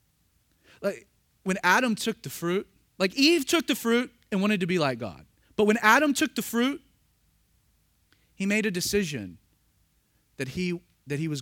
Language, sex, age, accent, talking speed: English, male, 30-49, American, 170 wpm